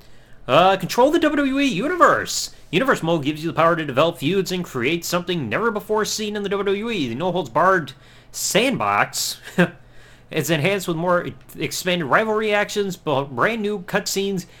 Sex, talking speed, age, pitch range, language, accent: male, 155 wpm, 30-49, 135-200 Hz, English, American